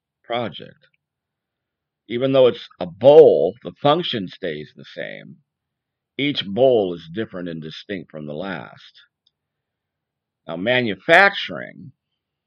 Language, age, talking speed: English, 50-69, 105 wpm